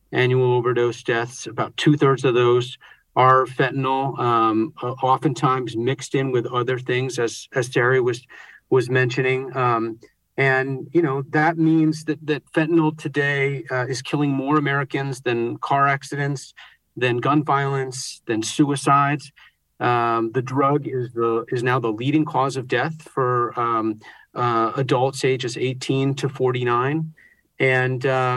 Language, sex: English, male